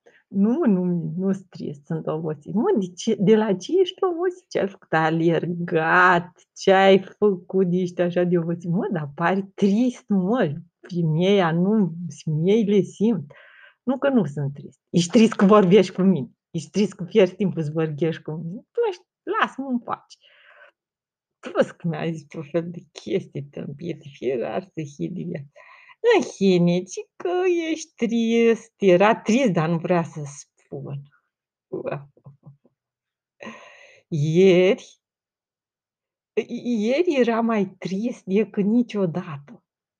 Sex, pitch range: female, 165-215 Hz